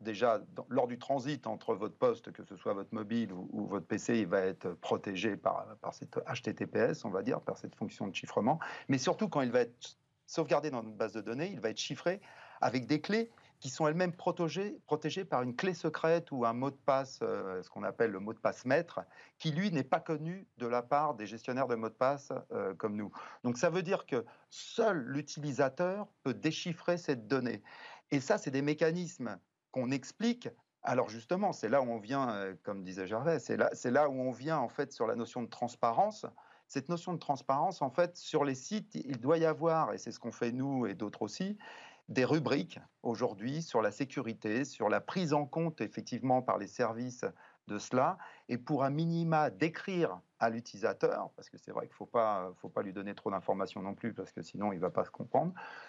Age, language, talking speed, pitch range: 40-59, French, 220 wpm, 115-165 Hz